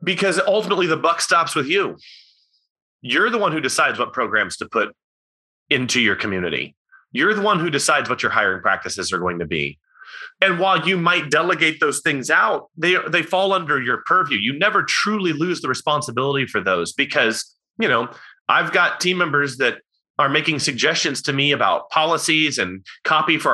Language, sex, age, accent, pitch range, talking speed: English, male, 30-49, American, 140-185 Hz, 185 wpm